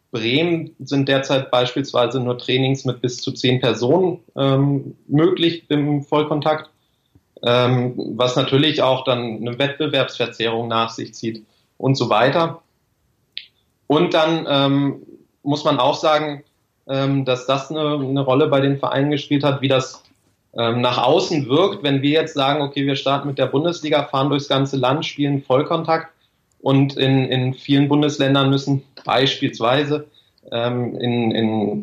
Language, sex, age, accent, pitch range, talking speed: German, male, 30-49, German, 125-145 Hz, 145 wpm